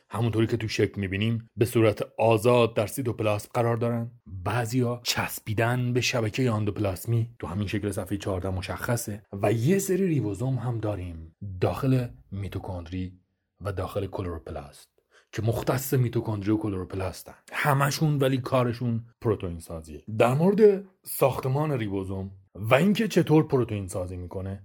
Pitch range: 100-135 Hz